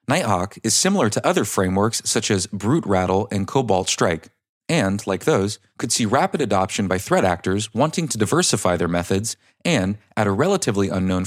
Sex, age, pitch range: male, 30-49, 95-125 Hz